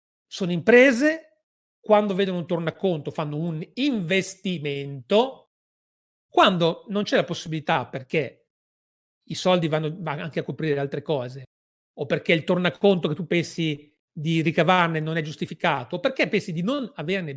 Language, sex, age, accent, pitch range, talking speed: Italian, male, 40-59, native, 150-210 Hz, 140 wpm